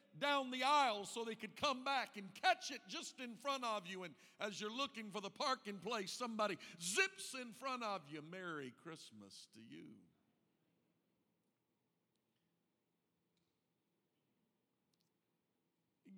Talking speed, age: 130 wpm, 50-69